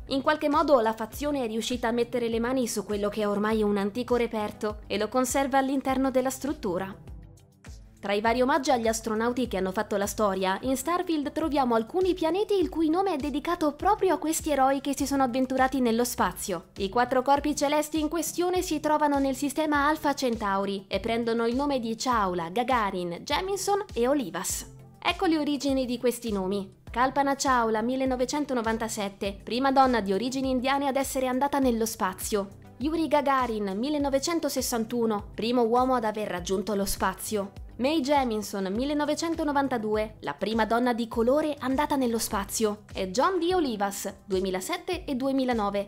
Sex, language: female, Italian